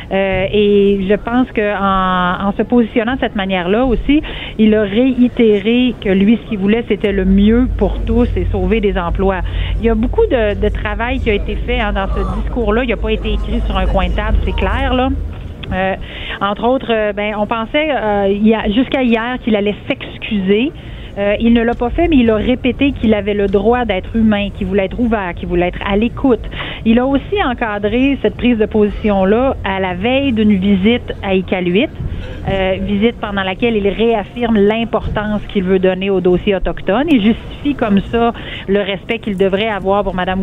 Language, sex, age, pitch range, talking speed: French, female, 40-59, 195-235 Hz, 205 wpm